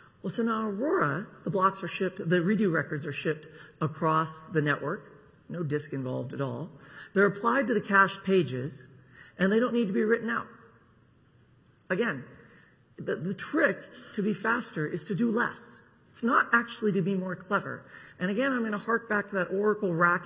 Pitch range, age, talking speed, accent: 145-200 Hz, 40-59, 190 wpm, American